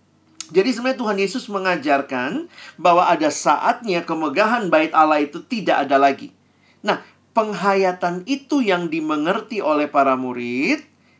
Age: 40-59